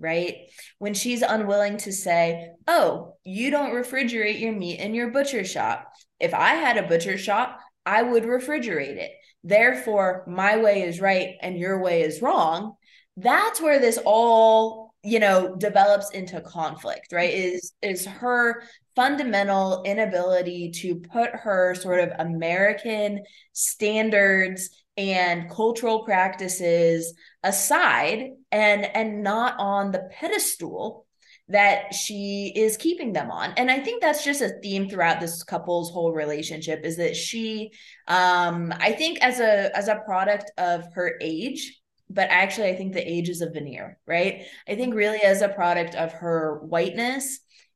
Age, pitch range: 20-39, 175-225 Hz